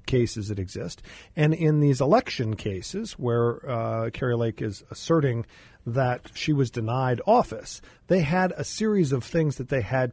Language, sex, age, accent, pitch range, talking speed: English, male, 50-69, American, 120-155 Hz, 165 wpm